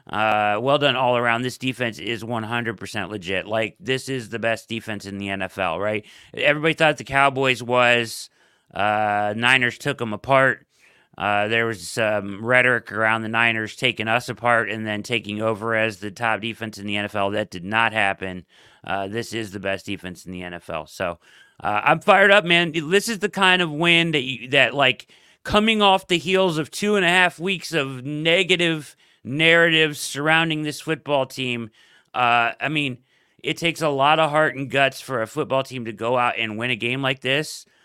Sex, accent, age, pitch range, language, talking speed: male, American, 30-49, 105-140 Hz, English, 195 wpm